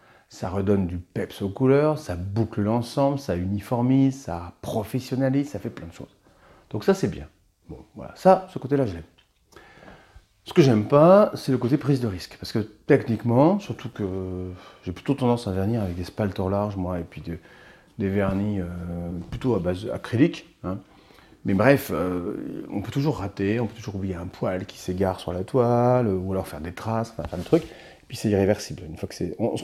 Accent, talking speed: French, 205 wpm